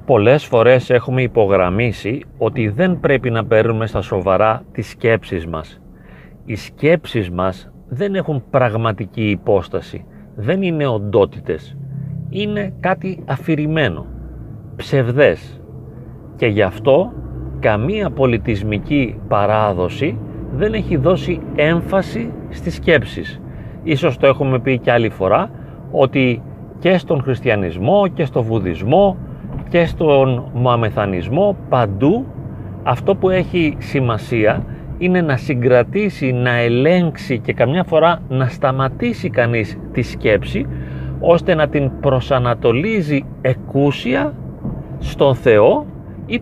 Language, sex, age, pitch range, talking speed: Greek, male, 40-59, 115-160 Hz, 105 wpm